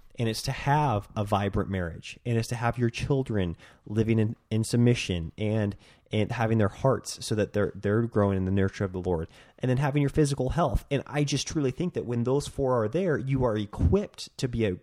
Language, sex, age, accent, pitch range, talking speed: English, male, 20-39, American, 100-130 Hz, 245 wpm